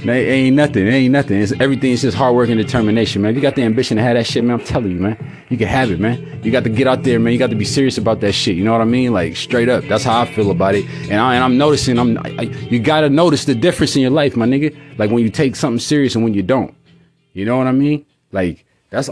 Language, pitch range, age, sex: English, 105-130 Hz, 30-49, male